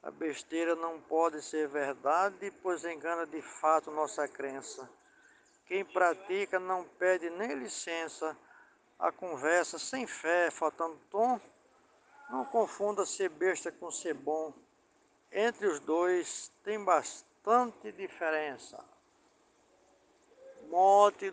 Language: Portuguese